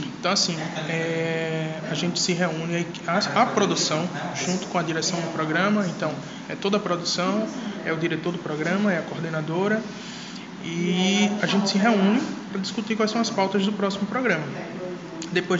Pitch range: 165-205 Hz